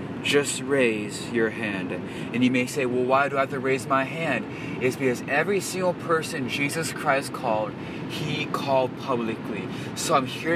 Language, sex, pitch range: English, male, 125-145 Hz